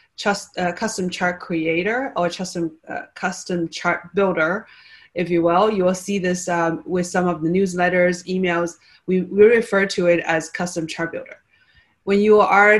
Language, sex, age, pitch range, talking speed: English, female, 30-49, 175-210 Hz, 175 wpm